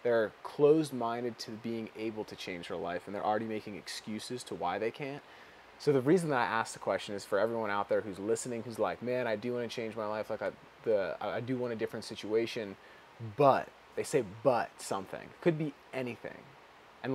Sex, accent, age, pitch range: male, American, 20-39, 105-125 Hz